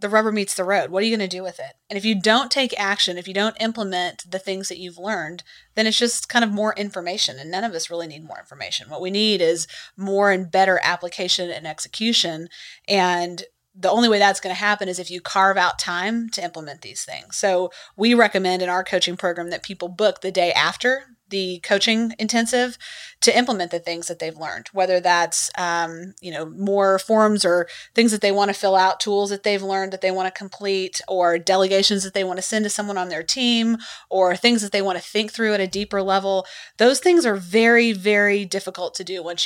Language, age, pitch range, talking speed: English, 30-49, 180-215 Hz, 230 wpm